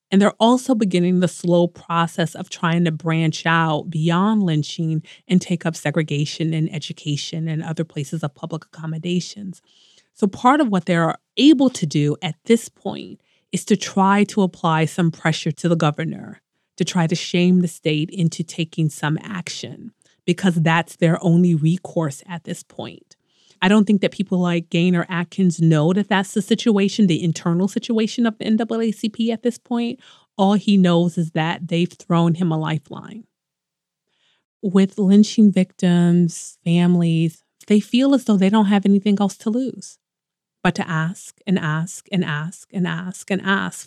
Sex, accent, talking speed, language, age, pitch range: female, American, 170 wpm, English, 30-49, 165-200 Hz